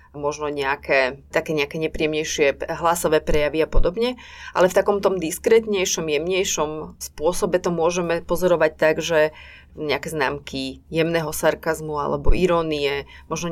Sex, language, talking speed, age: female, Slovak, 115 wpm, 30-49